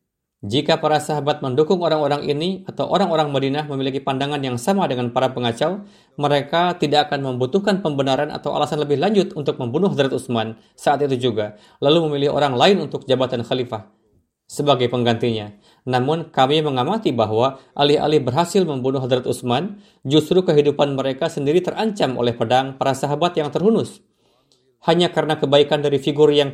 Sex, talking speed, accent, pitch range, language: male, 150 wpm, native, 125-155 Hz, Indonesian